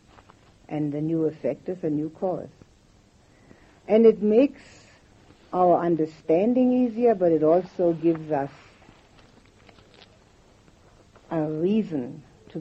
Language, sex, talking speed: English, female, 105 wpm